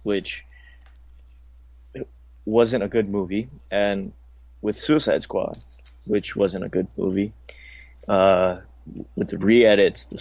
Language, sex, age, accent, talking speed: English, male, 20-39, American, 120 wpm